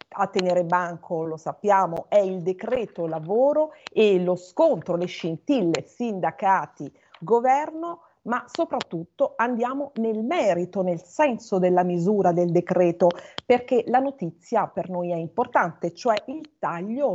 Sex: female